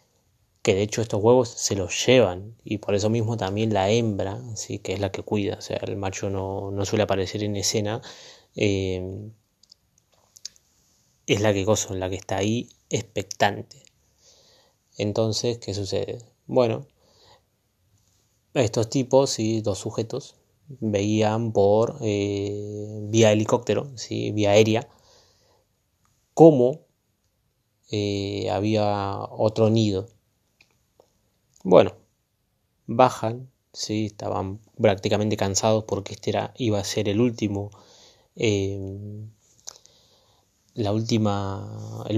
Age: 20-39